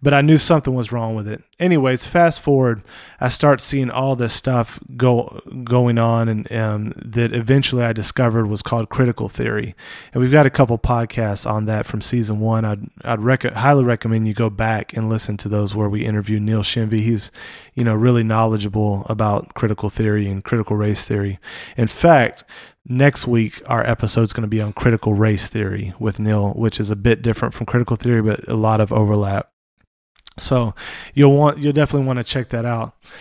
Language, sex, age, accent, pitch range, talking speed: English, male, 20-39, American, 110-130 Hz, 195 wpm